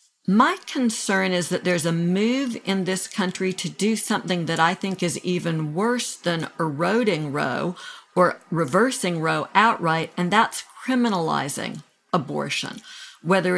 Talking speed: 135 wpm